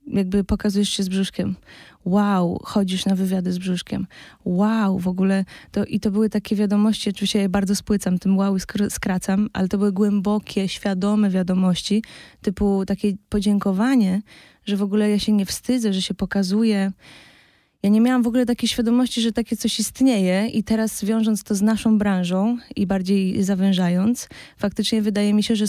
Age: 20-39